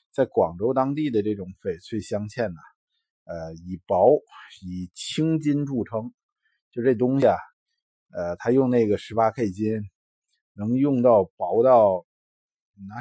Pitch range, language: 95-130 Hz, Chinese